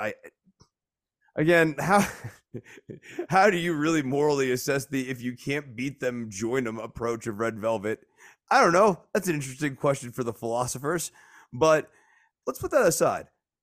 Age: 30-49